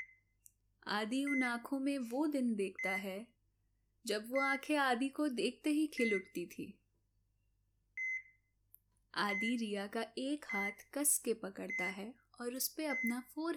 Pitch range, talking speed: 185-270 Hz, 140 wpm